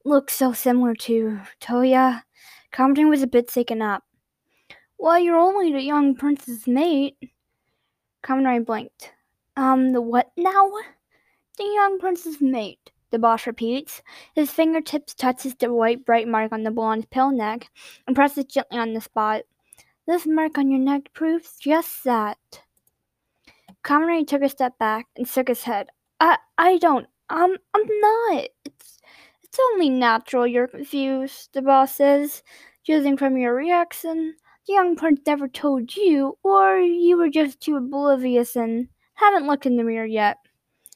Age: 10-29